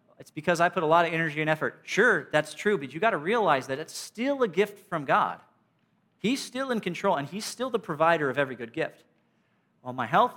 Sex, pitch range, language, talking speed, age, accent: male, 145-195 Hz, English, 235 wpm, 40-59, American